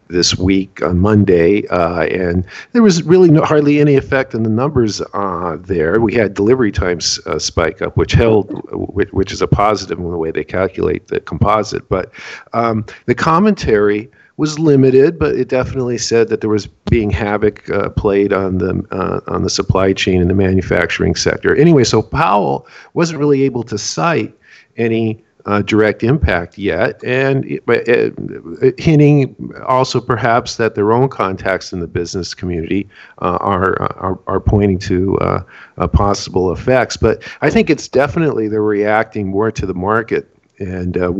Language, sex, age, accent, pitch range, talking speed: English, male, 50-69, American, 95-130 Hz, 170 wpm